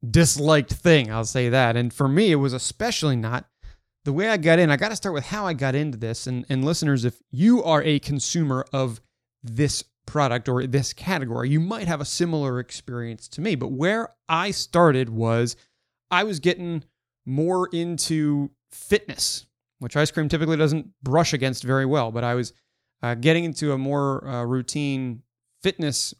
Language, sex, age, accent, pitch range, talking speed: English, male, 30-49, American, 125-165 Hz, 185 wpm